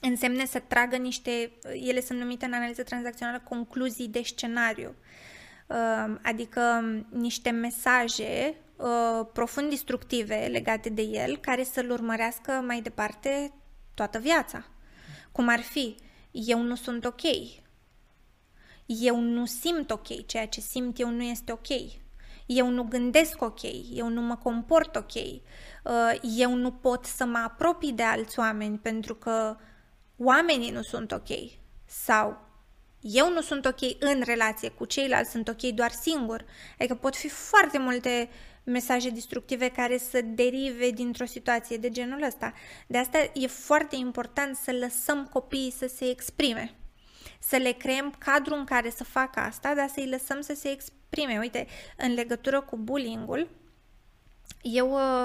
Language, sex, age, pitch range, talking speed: Romanian, female, 20-39, 235-265 Hz, 140 wpm